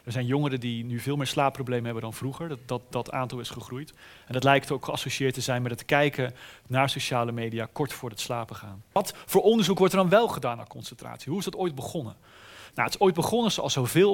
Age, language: 40-59, Dutch